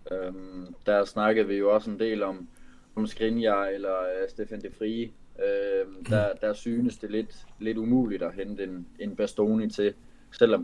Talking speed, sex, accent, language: 175 wpm, male, native, Danish